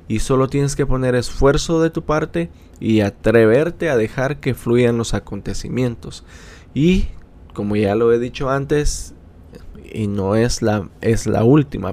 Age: 20-39